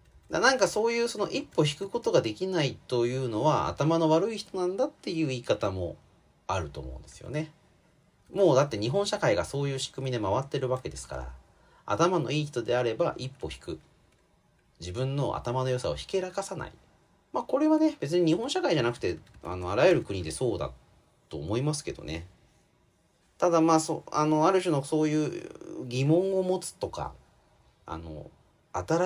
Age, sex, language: 40-59, male, Japanese